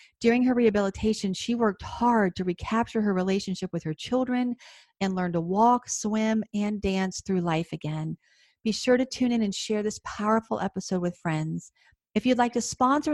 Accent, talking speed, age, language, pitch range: American, 185 wpm, 40-59, English, 185-235 Hz